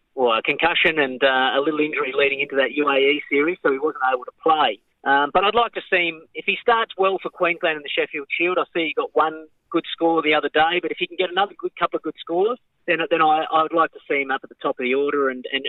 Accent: Australian